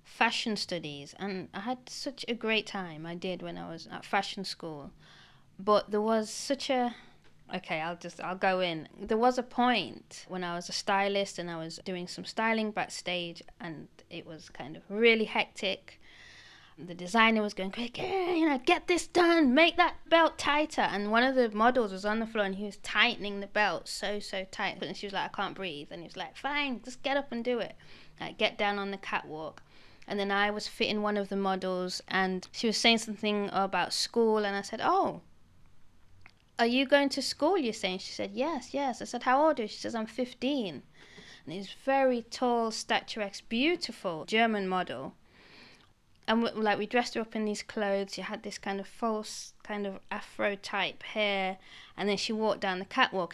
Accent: British